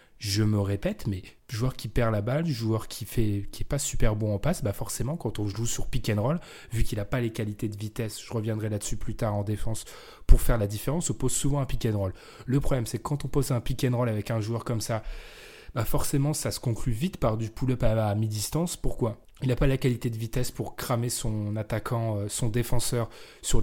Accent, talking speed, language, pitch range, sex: French, 225 wpm, French, 110-135 Hz, male